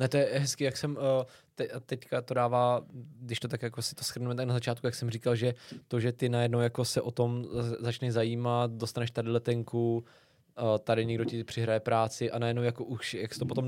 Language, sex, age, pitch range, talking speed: Czech, male, 20-39, 115-130 Hz, 215 wpm